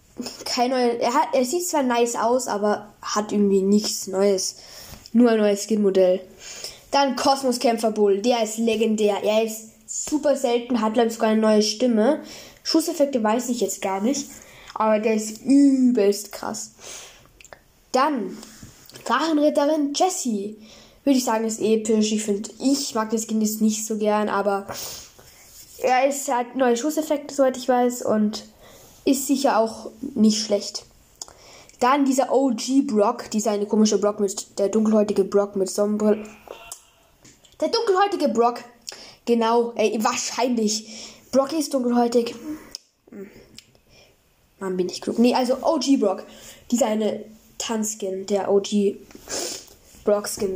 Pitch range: 210-260 Hz